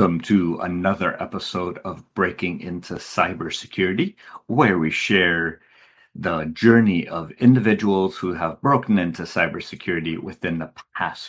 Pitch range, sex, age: 85-115 Hz, male, 50-69